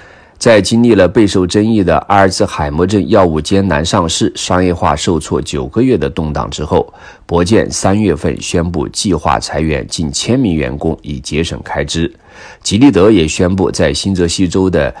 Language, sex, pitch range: Chinese, male, 75-95 Hz